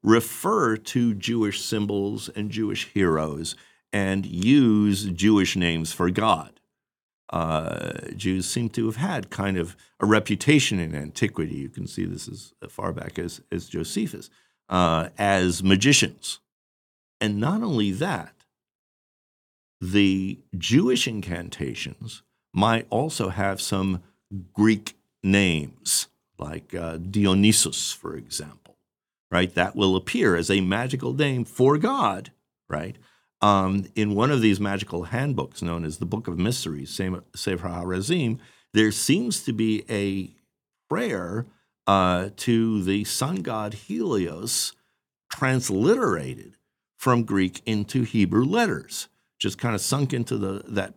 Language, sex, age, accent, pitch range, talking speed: English, male, 50-69, American, 90-115 Hz, 125 wpm